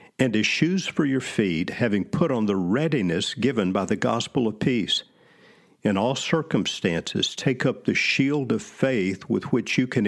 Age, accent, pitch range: 50-69, American, 95-135 Hz